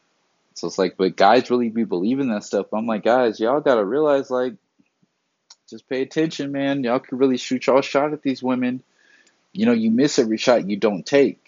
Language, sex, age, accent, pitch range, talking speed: English, male, 30-49, American, 100-140 Hz, 210 wpm